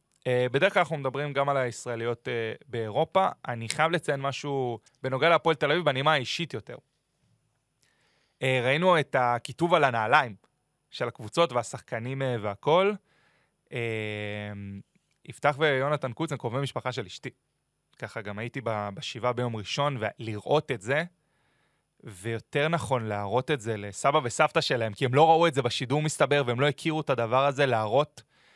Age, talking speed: 30-49, 155 wpm